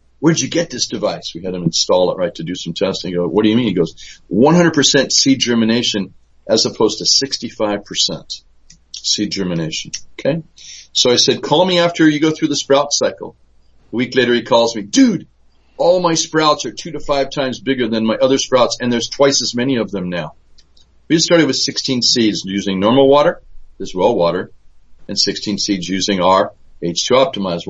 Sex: male